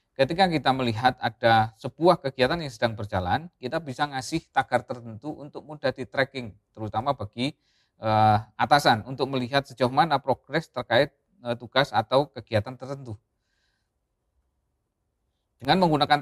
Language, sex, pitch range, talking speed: Indonesian, male, 115-150 Hz, 130 wpm